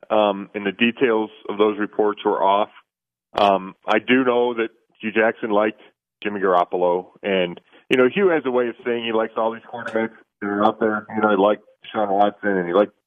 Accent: American